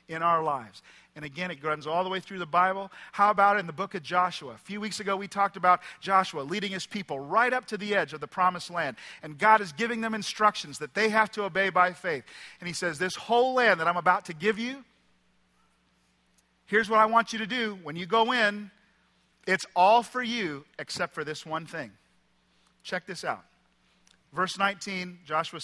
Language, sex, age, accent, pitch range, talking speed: English, male, 40-59, American, 165-210 Hz, 215 wpm